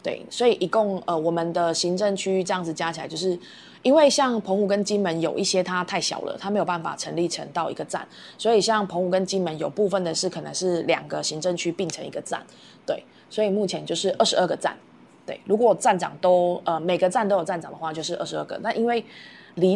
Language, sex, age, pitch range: Chinese, female, 20-39, 170-200 Hz